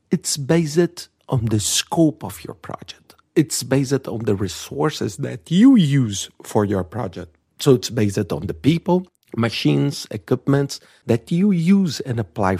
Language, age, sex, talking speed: English, 50-69, male, 150 wpm